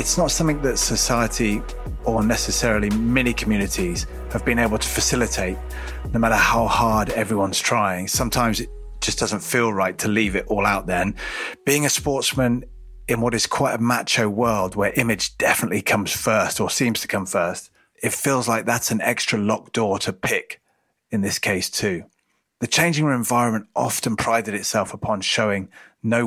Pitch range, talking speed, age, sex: 105-120 Hz, 170 wpm, 30-49, male